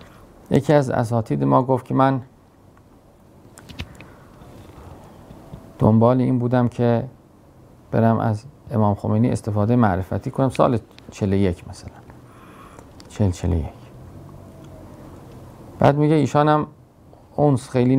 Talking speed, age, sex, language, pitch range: 100 wpm, 50-69, male, Persian, 105-140 Hz